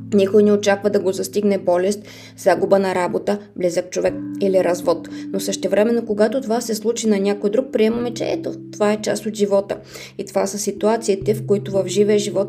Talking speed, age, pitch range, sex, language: 195 wpm, 20-39, 180-215 Hz, female, Bulgarian